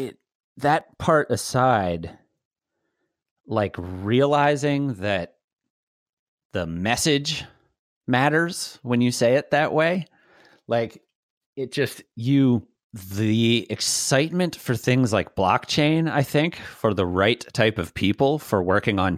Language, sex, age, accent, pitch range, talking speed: English, male, 30-49, American, 95-135 Hz, 115 wpm